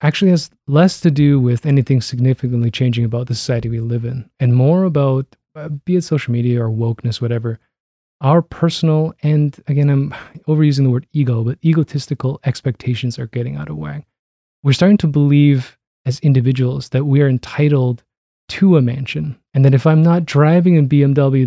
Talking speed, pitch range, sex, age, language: 175 wpm, 120-150 Hz, male, 20-39, English